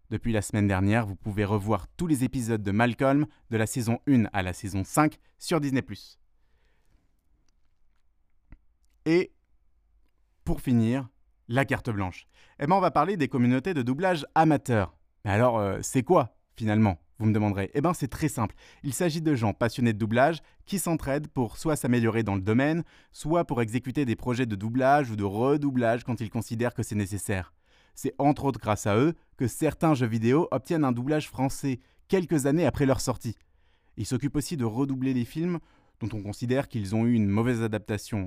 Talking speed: 185 wpm